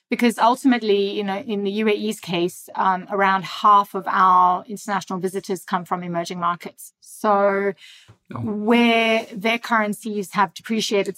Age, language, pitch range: 30-49, English, 195-225 Hz